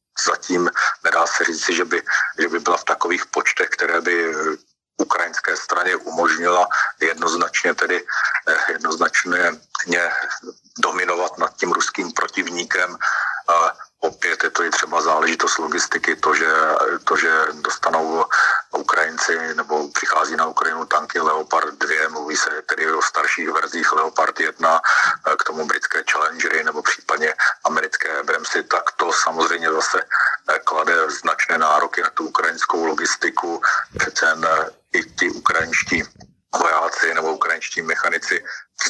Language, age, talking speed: Slovak, 50-69, 125 wpm